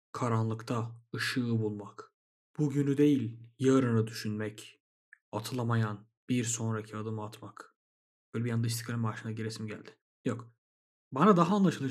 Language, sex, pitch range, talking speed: Turkish, male, 115-140 Hz, 115 wpm